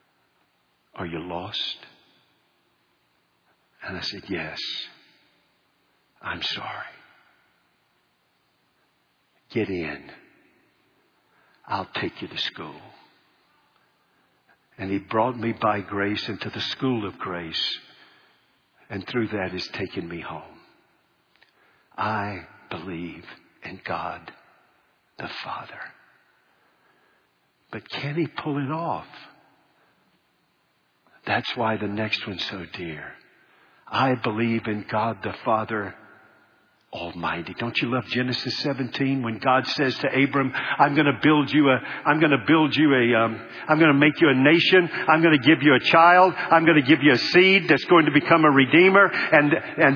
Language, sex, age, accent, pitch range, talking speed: English, male, 60-79, American, 125-210 Hz, 135 wpm